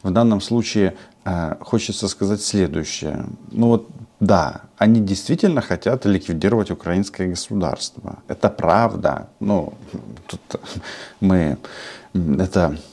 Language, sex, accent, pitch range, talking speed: Russian, male, native, 90-115 Hz, 95 wpm